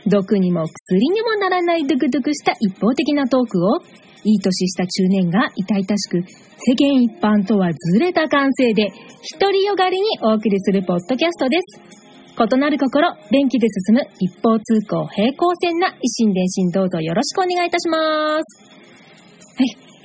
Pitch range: 195-285 Hz